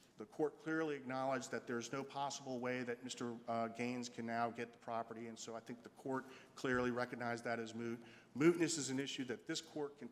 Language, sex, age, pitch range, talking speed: English, male, 40-59, 120-140 Hz, 220 wpm